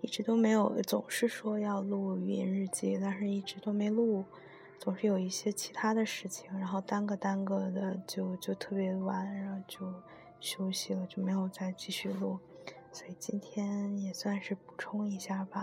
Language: Chinese